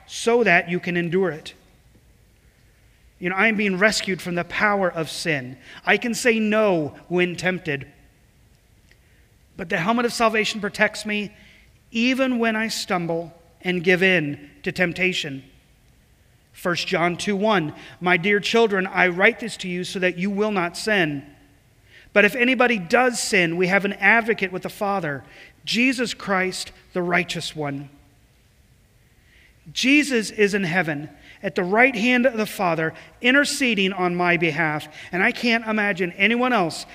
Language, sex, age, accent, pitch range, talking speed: English, male, 40-59, American, 165-220 Hz, 160 wpm